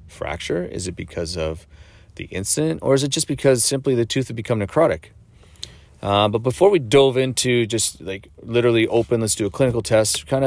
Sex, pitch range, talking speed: male, 90-120 Hz, 195 wpm